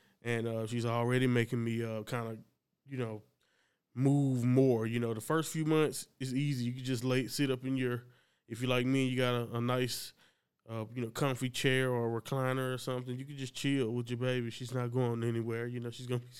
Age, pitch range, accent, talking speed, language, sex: 20-39, 115-130 Hz, American, 230 wpm, English, male